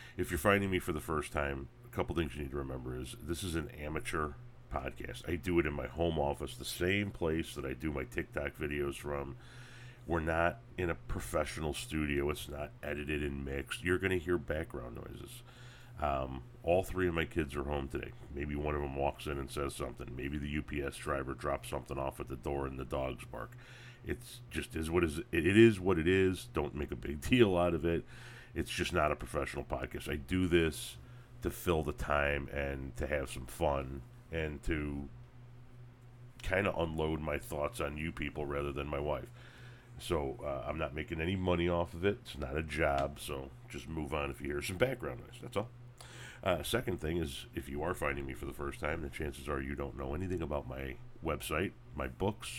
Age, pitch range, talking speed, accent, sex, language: 40-59, 70-100 Hz, 215 wpm, American, male, English